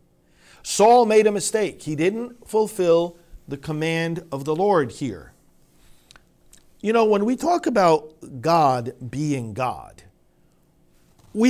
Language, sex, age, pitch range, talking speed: English, male, 50-69, 130-190 Hz, 120 wpm